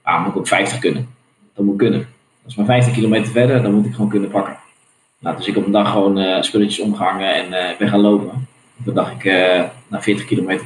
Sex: male